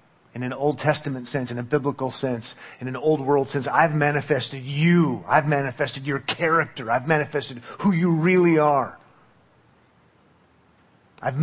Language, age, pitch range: English, 40-59, 130-155 Hz